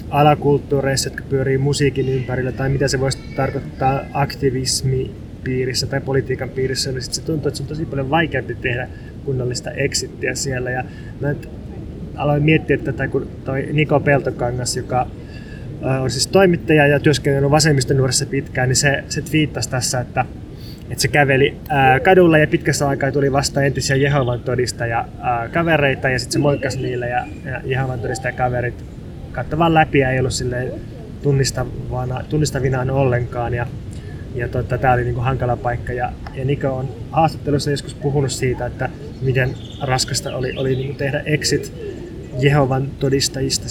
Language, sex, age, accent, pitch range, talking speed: Finnish, male, 20-39, native, 125-140 Hz, 145 wpm